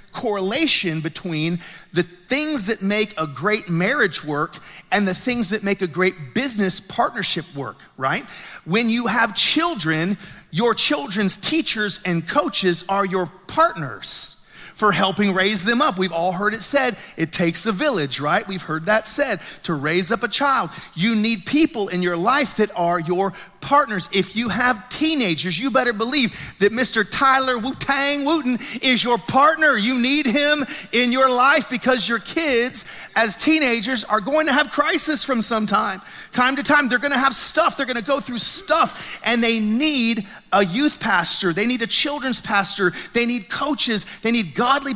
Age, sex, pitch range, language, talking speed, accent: 40-59, male, 190-270 Hz, English, 175 wpm, American